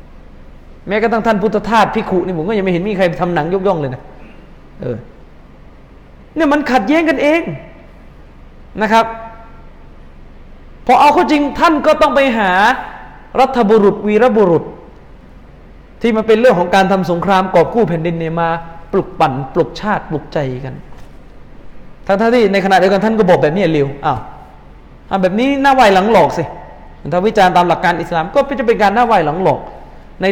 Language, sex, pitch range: Thai, male, 160-225 Hz